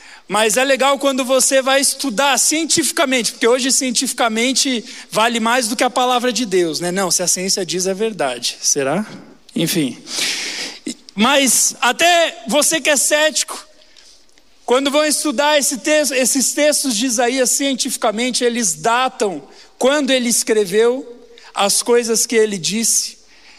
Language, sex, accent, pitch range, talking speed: Portuguese, male, Brazilian, 200-265 Hz, 135 wpm